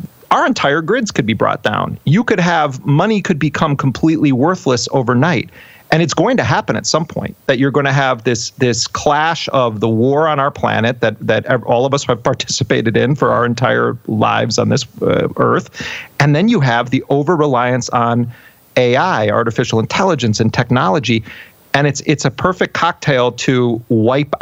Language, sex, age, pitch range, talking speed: English, male, 40-59, 115-140 Hz, 185 wpm